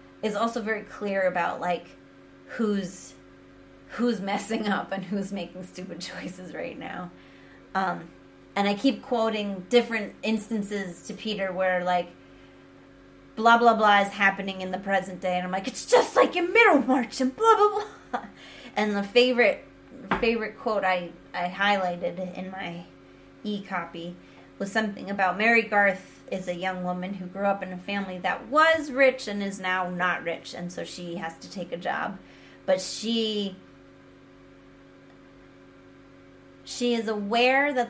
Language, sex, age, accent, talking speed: English, female, 20-39, American, 155 wpm